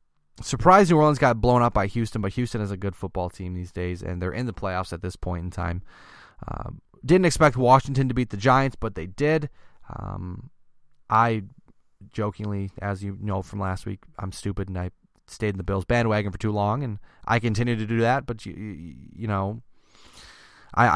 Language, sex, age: English, male, 20-39